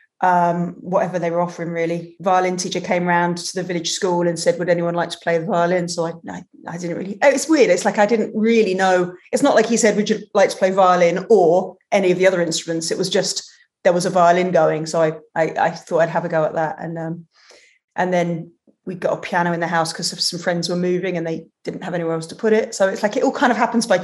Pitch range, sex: 175-210 Hz, female